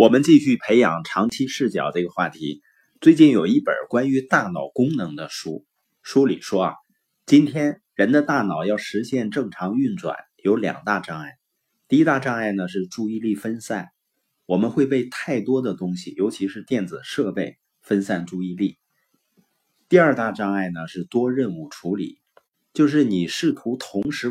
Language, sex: Chinese, male